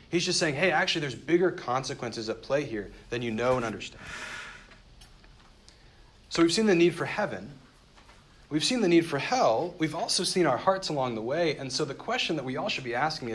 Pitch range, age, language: 115-165 Hz, 40-59, English